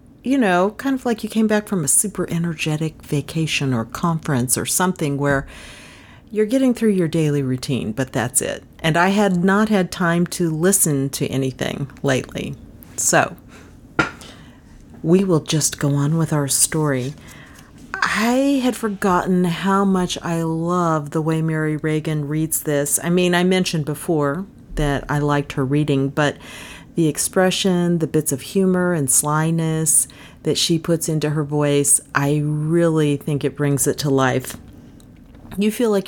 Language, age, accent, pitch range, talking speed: English, 40-59, American, 145-190 Hz, 160 wpm